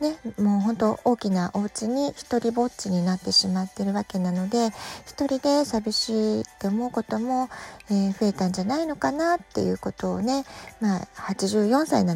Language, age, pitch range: Japanese, 40-59, 185-245 Hz